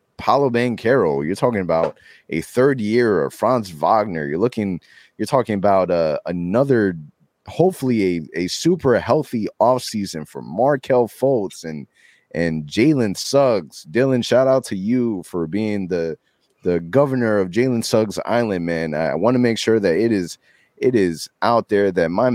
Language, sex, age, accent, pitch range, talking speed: English, male, 20-39, American, 80-110 Hz, 165 wpm